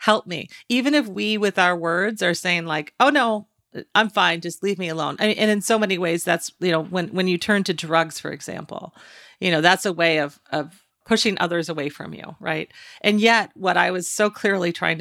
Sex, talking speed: female, 230 wpm